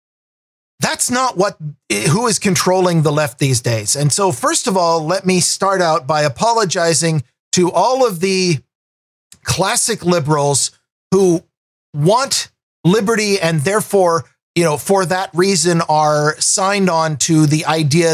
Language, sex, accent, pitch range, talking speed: English, male, American, 150-185 Hz, 140 wpm